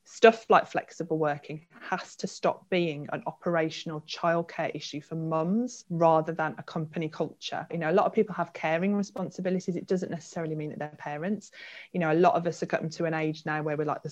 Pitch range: 155-180 Hz